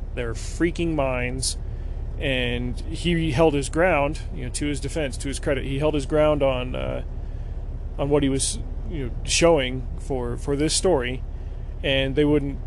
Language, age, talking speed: English, 30-49, 170 wpm